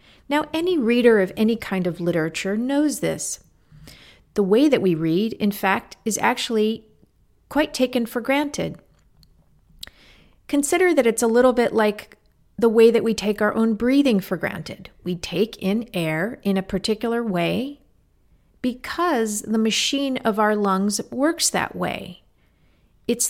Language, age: English, 40-59